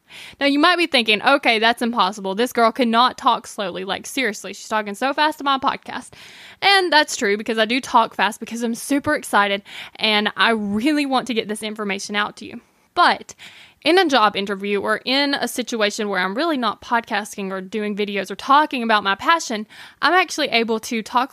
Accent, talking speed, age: American, 205 wpm, 10-29